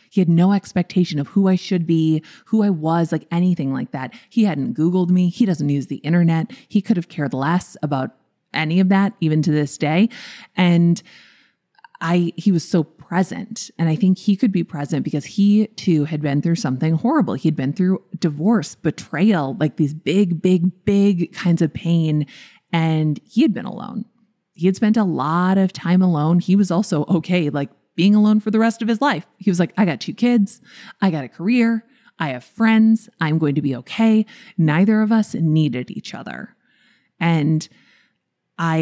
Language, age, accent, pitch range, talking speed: English, 20-39, American, 155-205 Hz, 195 wpm